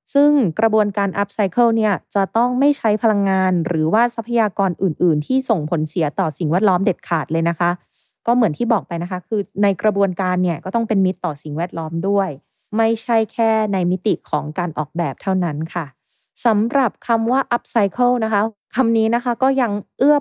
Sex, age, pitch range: female, 20-39, 180-230 Hz